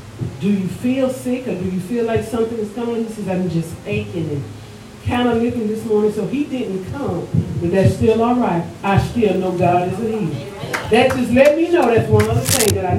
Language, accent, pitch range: English, American, 185-245 Hz